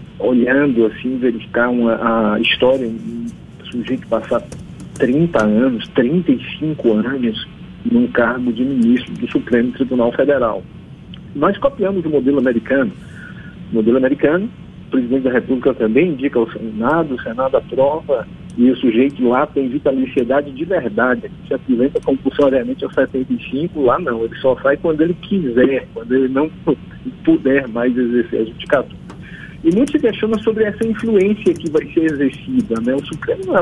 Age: 50-69